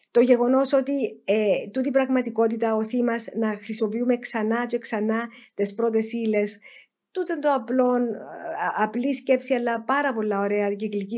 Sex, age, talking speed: female, 50-69, 130 wpm